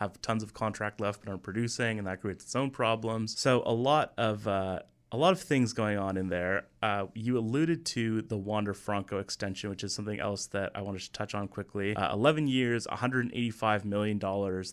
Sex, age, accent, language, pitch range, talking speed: male, 30-49, American, English, 100-120 Hz, 210 wpm